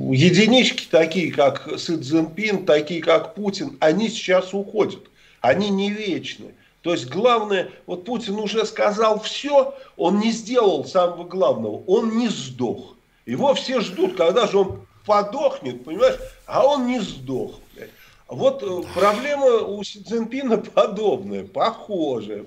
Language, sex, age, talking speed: Russian, male, 50-69, 130 wpm